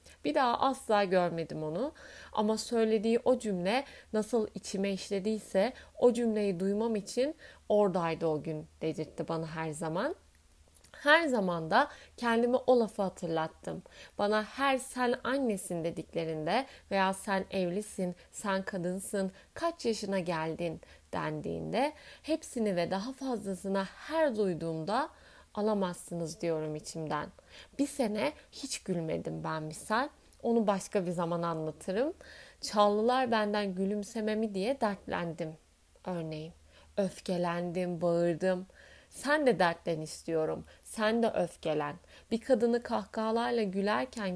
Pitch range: 170-235 Hz